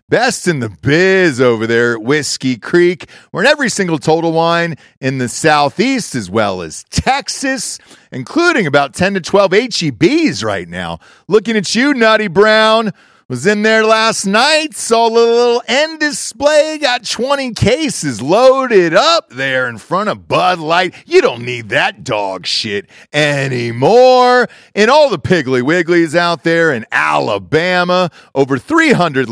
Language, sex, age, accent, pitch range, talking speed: English, male, 40-59, American, 135-215 Hz, 150 wpm